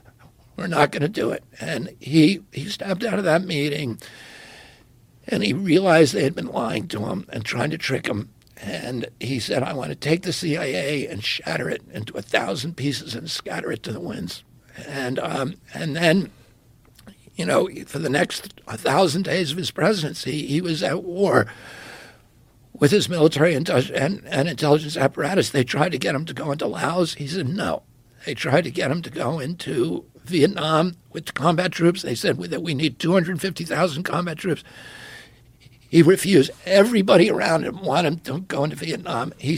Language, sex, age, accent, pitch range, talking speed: English, male, 60-79, American, 145-180 Hz, 185 wpm